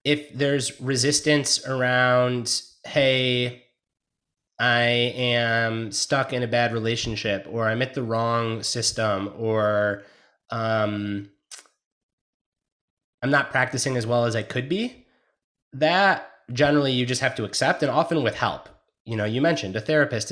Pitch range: 115-145 Hz